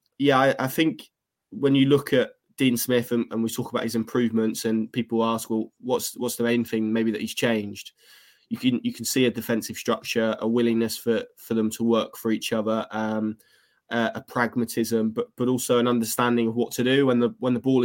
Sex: male